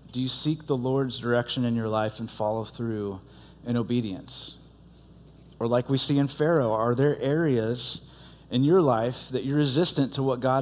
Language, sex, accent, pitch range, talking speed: English, male, American, 120-145 Hz, 180 wpm